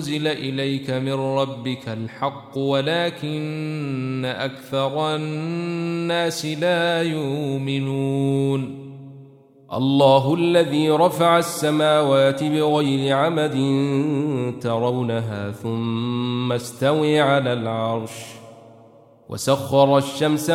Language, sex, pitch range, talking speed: Arabic, male, 125-150 Hz, 65 wpm